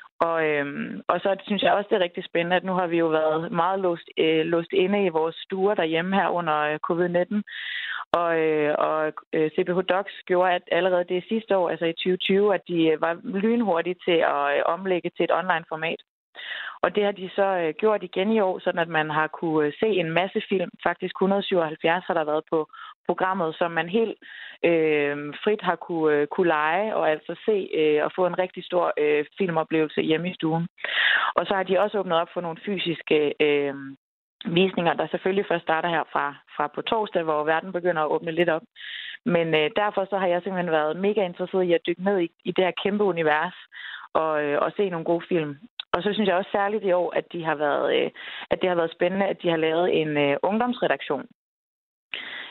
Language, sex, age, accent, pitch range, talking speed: Danish, female, 20-39, native, 160-190 Hz, 205 wpm